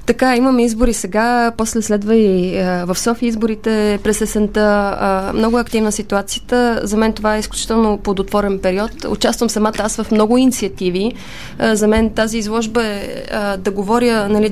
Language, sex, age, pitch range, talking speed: Bulgarian, female, 20-39, 210-245 Hz, 160 wpm